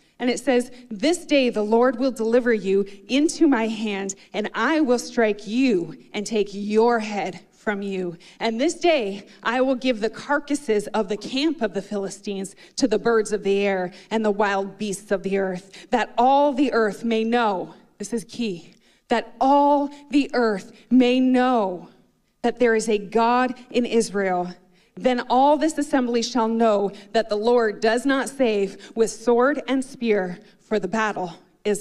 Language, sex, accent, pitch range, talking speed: English, female, American, 200-250 Hz, 175 wpm